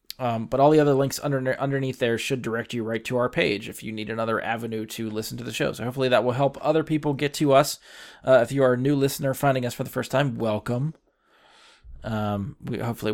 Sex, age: male, 20-39